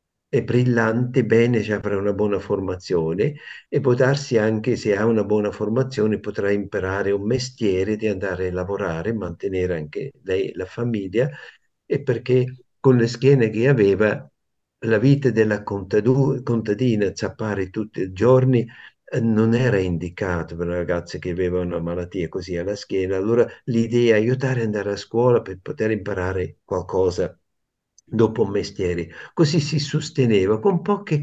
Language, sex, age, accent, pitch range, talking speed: Italian, male, 50-69, native, 100-130 Hz, 150 wpm